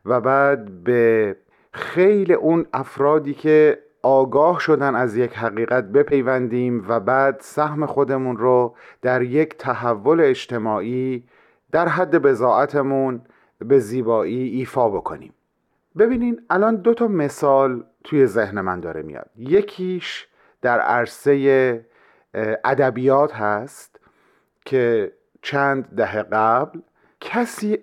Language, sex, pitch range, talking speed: Persian, male, 120-155 Hz, 105 wpm